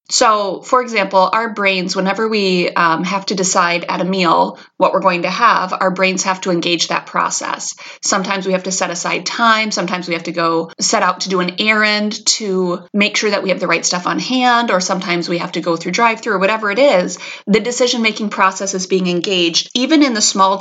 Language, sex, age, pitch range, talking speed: English, female, 30-49, 180-220 Hz, 225 wpm